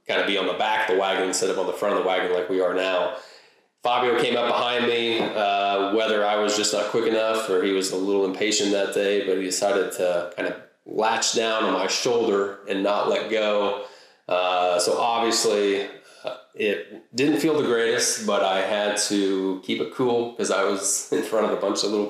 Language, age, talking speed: English, 30-49, 225 wpm